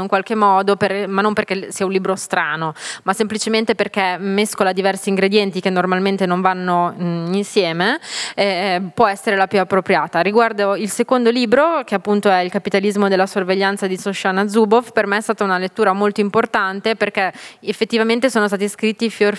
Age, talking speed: 20-39, 175 wpm